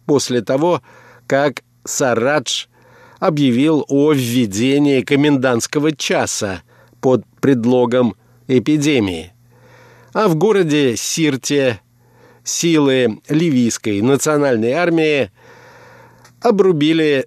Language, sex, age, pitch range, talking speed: Russian, male, 50-69, 120-150 Hz, 75 wpm